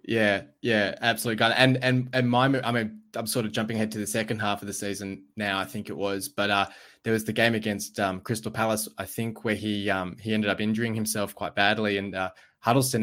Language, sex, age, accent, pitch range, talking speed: English, male, 20-39, Australian, 100-115 Hz, 235 wpm